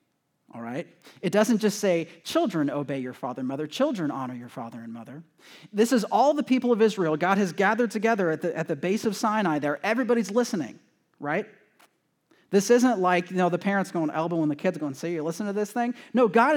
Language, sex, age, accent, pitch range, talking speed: English, male, 30-49, American, 145-200 Hz, 225 wpm